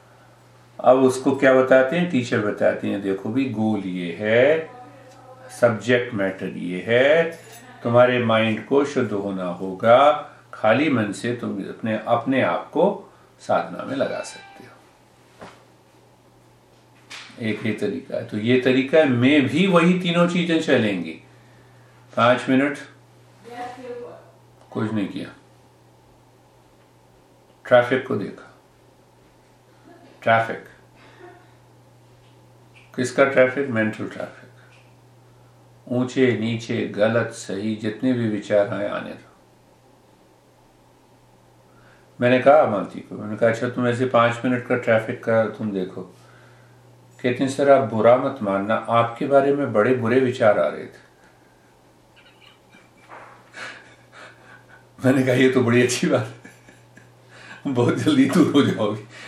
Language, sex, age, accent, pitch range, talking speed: Hindi, male, 50-69, native, 105-130 Hz, 120 wpm